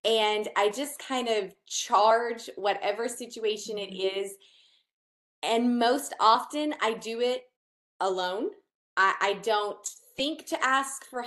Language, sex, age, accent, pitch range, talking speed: English, female, 20-39, American, 195-260 Hz, 130 wpm